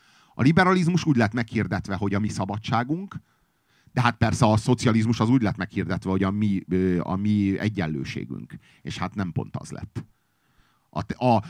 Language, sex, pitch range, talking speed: Hungarian, male, 95-125 Hz, 155 wpm